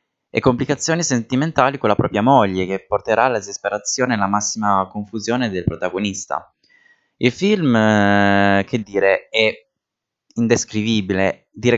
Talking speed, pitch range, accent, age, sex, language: 125 wpm, 95-120 Hz, native, 20-39, male, Italian